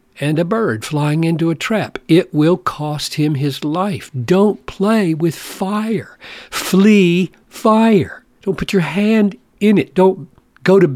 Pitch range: 125-200 Hz